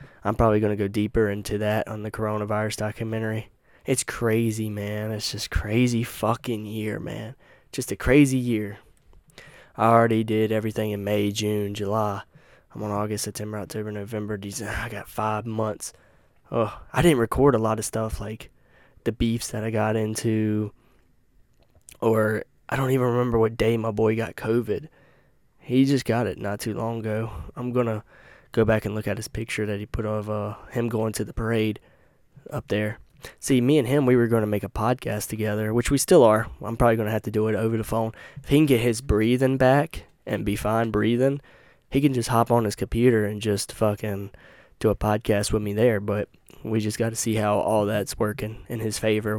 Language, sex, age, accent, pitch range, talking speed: English, male, 10-29, American, 105-120 Hz, 200 wpm